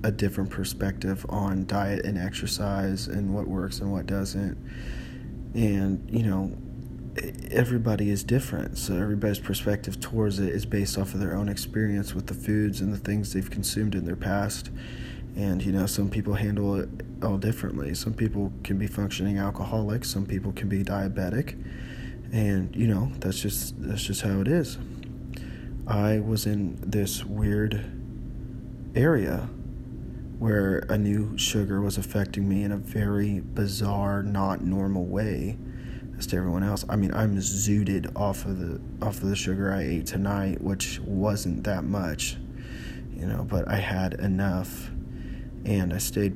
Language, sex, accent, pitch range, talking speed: English, male, American, 95-105 Hz, 160 wpm